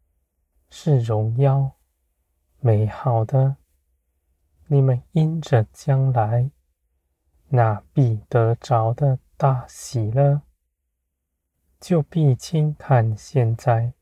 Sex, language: male, Chinese